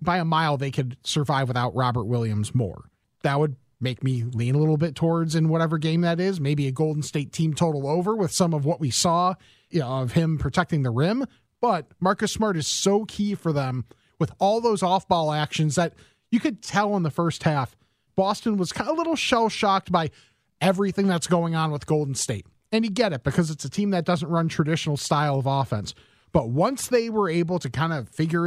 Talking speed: 215 wpm